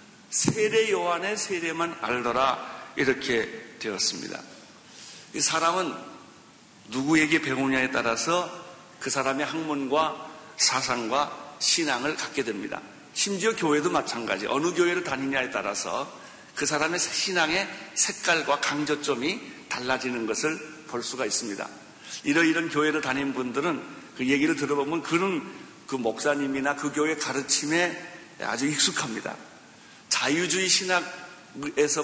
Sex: male